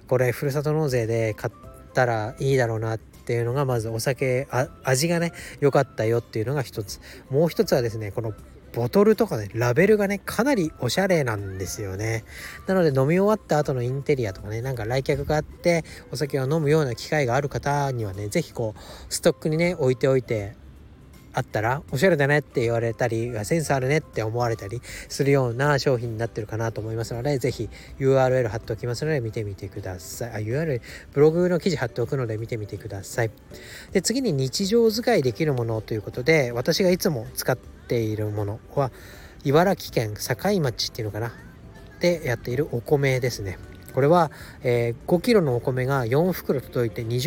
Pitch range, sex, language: 110-150 Hz, male, Japanese